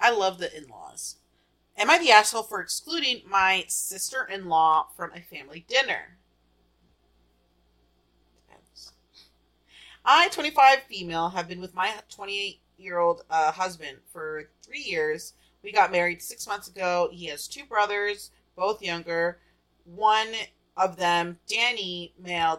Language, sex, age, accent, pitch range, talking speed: English, female, 30-49, American, 170-240 Hz, 120 wpm